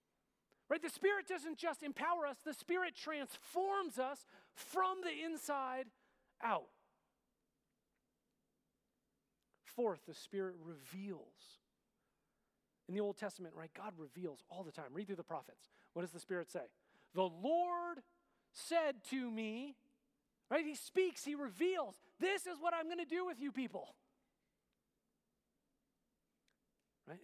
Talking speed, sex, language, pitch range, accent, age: 130 wpm, male, English, 180-290 Hz, American, 40-59